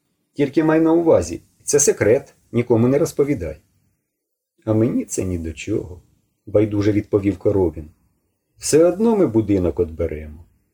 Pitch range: 90-140 Hz